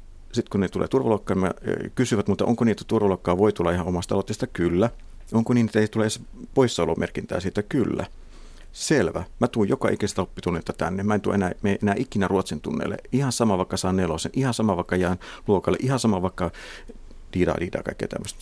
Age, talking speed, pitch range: 50-69, 185 wpm, 90-115 Hz